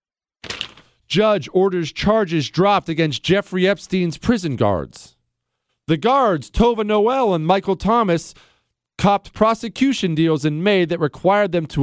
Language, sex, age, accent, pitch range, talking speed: English, male, 40-59, American, 140-200 Hz, 125 wpm